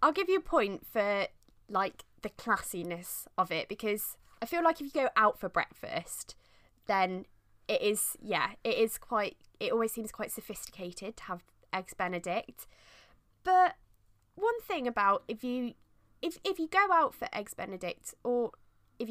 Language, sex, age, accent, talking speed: English, female, 20-39, British, 165 wpm